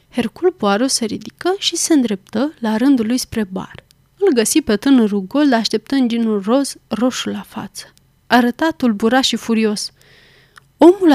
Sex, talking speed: female, 155 wpm